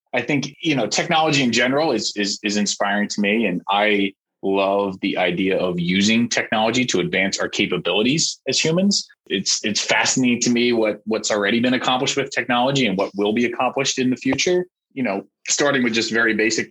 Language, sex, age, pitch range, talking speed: English, male, 20-39, 95-120 Hz, 195 wpm